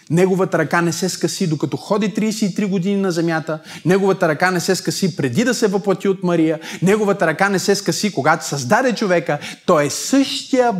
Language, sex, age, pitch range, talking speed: Bulgarian, male, 20-39, 160-200 Hz, 185 wpm